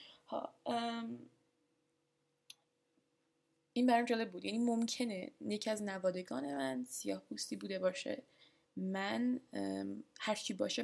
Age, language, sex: 10-29, Persian, female